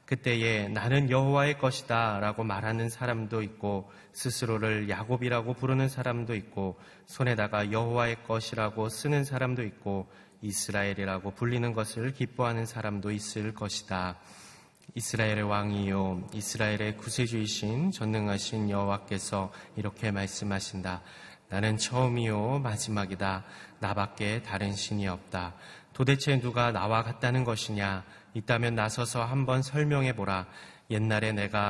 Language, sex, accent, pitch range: Korean, male, native, 100-120 Hz